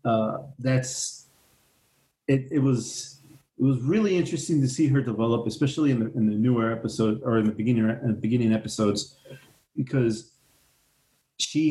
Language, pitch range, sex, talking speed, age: English, 115-145 Hz, male, 145 wpm, 40-59